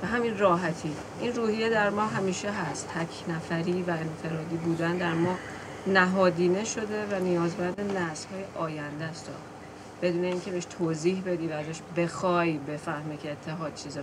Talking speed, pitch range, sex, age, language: 150 wpm, 165-190 Hz, female, 30-49, Persian